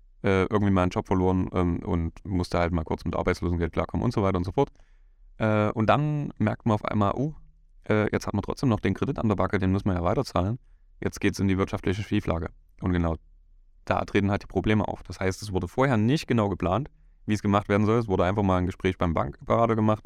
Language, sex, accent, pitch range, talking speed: German, male, German, 80-100 Hz, 240 wpm